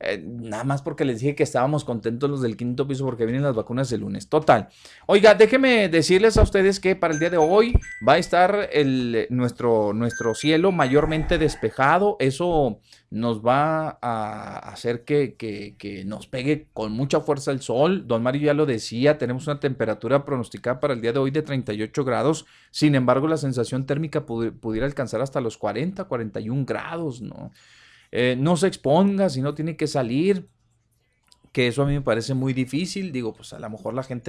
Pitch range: 115-155 Hz